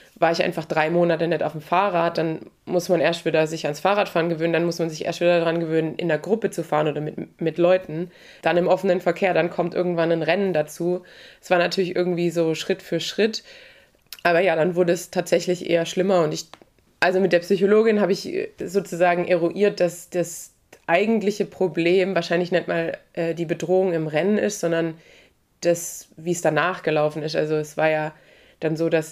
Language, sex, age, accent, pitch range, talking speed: German, female, 20-39, German, 160-185 Hz, 200 wpm